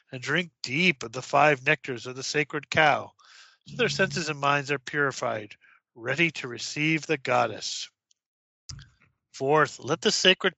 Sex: male